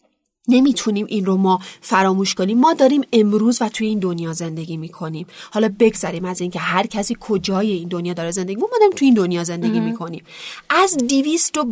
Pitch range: 185-240 Hz